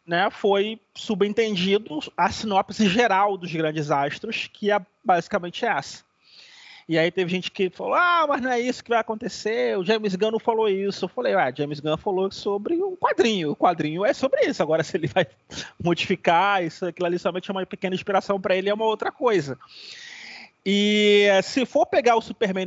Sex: male